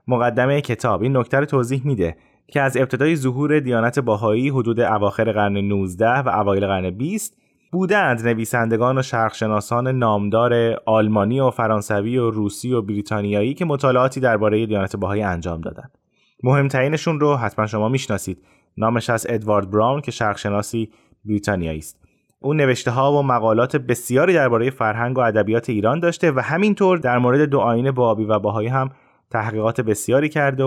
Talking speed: 150 wpm